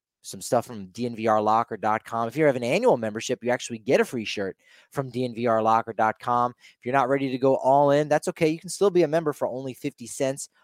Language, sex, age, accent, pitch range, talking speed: English, male, 30-49, American, 115-145 Hz, 215 wpm